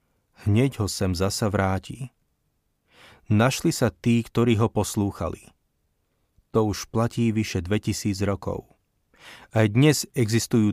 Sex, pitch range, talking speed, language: male, 95-115 Hz, 110 wpm, Slovak